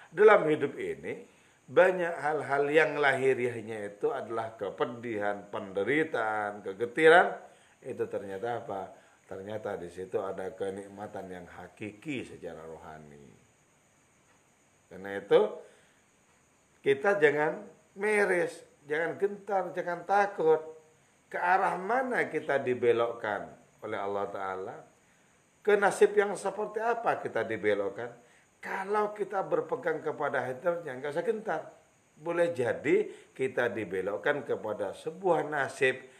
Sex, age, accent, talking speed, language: male, 40-59, Indonesian, 105 wpm, English